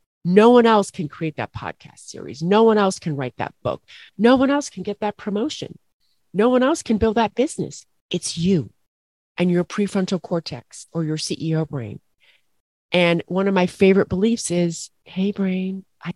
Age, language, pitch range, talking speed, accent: 40-59, English, 160-200 Hz, 180 wpm, American